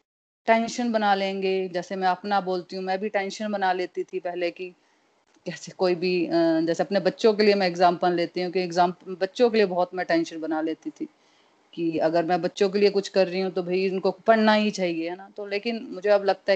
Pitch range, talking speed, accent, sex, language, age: 185-230 Hz, 225 wpm, native, female, Hindi, 30-49